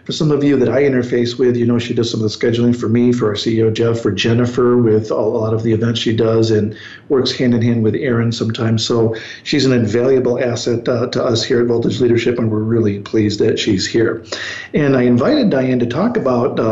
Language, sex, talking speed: English, male, 235 wpm